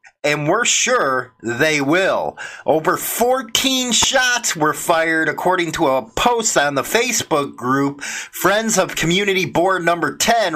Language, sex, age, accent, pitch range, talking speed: English, male, 30-49, American, 145-195 Hz, 135 wpm